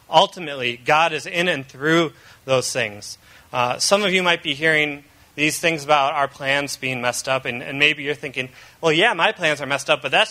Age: 30-49